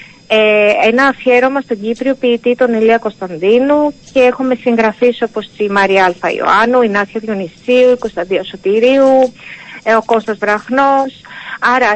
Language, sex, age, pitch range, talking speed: Greek, female, 30-49, 210-255 Hz, 135 wpm